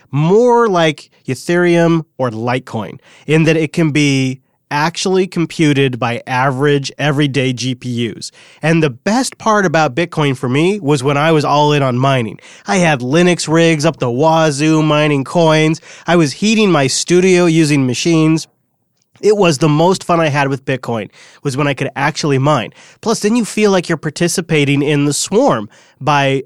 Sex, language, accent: male, English, American